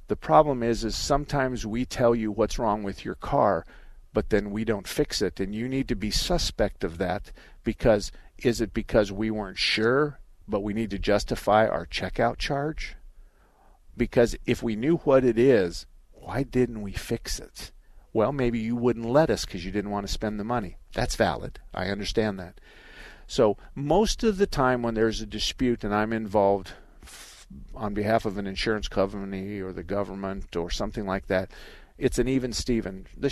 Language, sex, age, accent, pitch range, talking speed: English, male, 50-69, American, 100-120 Hz, 185 wpm